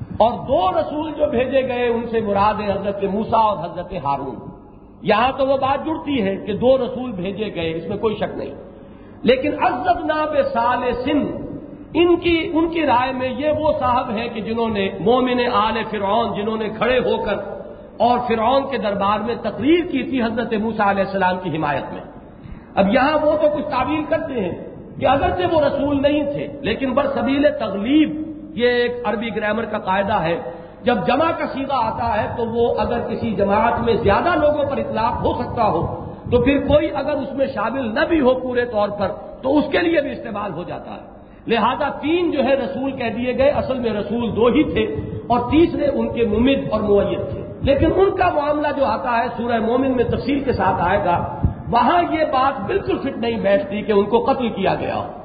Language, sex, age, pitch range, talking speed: English, male, 50-69, 215-290 Hz, 195 wpm